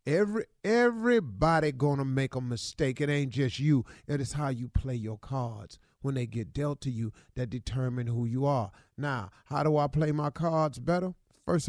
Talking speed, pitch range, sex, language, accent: 190 wpm, 125-175 Hz, male, English, American